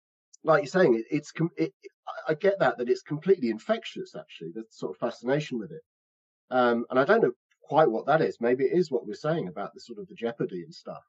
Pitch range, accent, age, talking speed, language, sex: 115-165 Hz, British, 40-59, 240 wpm, English, male